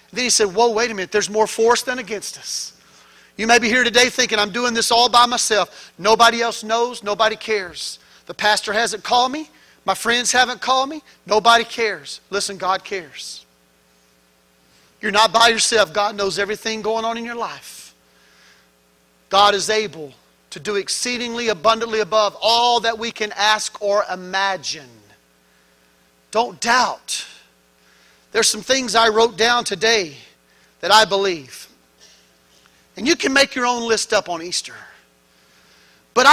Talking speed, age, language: 155 wpm, 40-59, English